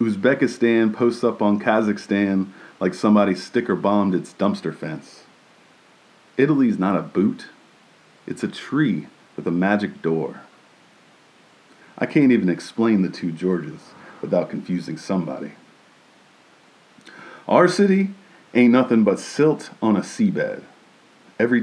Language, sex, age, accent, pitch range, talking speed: English, male, 40-59, American, 90-115 Hz, 115 wpm